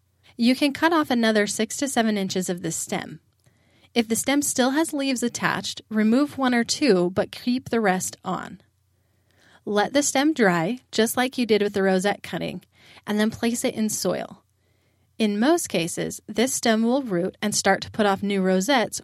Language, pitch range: English, 185-240 Hz